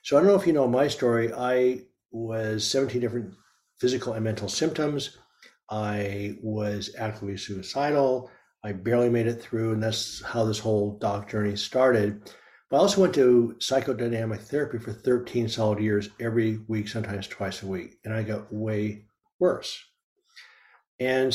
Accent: American